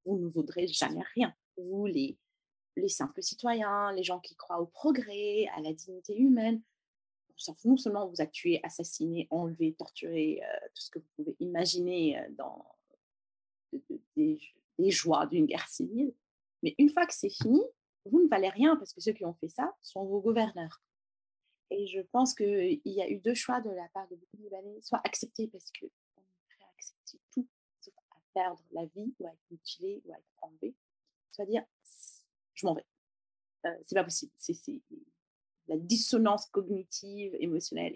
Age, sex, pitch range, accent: 30-49, female, 195-285 Hz, French